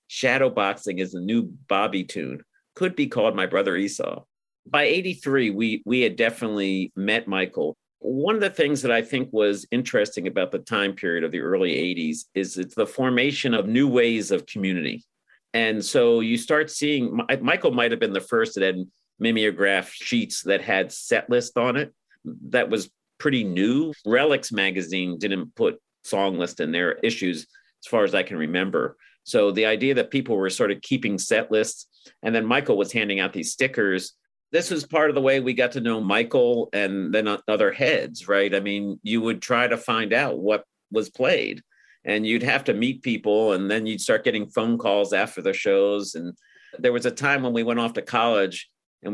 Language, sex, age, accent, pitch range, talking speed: English, male, 50-69, American, 100-130 Hz, 195 wpm